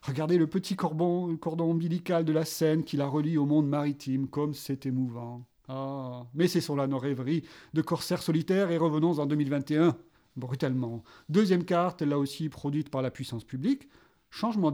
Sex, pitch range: male, 140-180 Hz